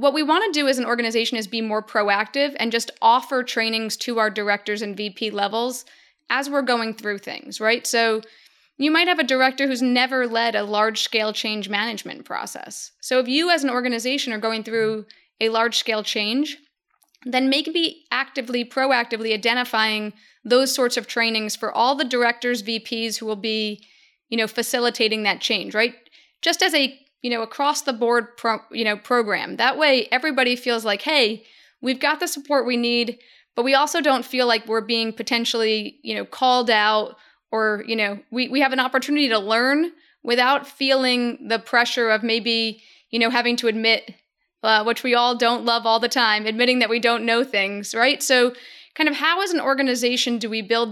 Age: 20-39